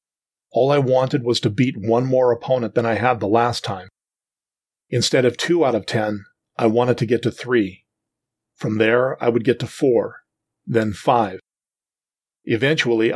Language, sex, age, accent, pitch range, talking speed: English, male, 40-59, American, 110-130 Hz, 170 wpm